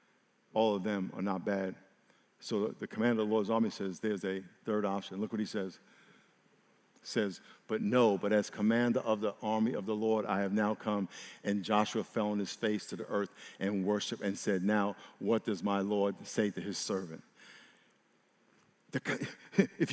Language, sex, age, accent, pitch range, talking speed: English, male, 50-69, American, 120-195 Hz, 185 wpm